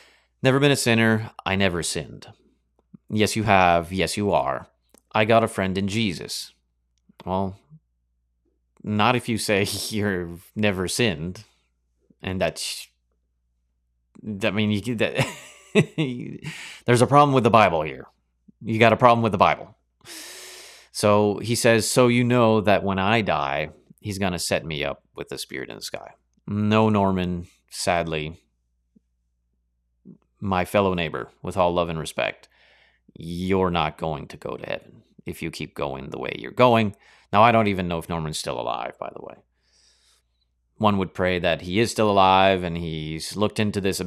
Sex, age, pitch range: male, 30-49, 80-110 Hz